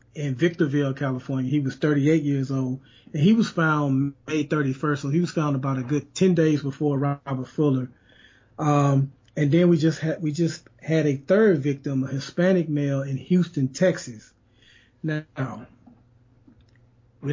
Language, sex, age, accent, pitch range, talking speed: English, male, 30-49, American, 130-155 Hz, 160 wpm